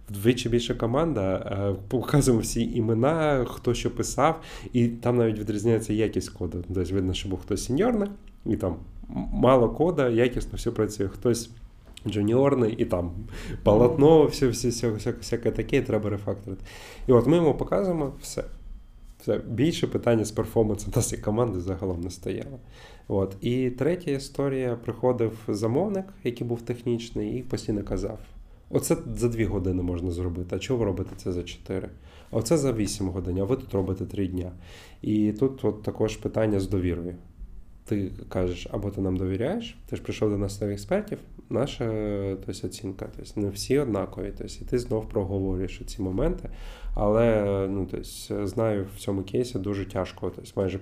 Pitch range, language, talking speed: 95-120 Hz, Ukrainian, 165 wpm